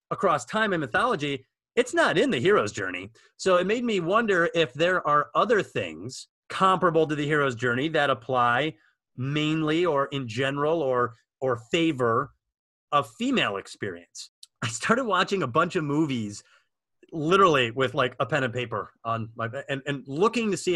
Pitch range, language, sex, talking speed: 125-175 Hz, English, male, 170 wpm